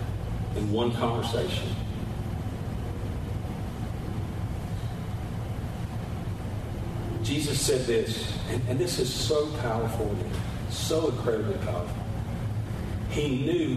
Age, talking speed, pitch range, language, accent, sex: 40-59, 75 wpm, 105-120 Hz, English, American, male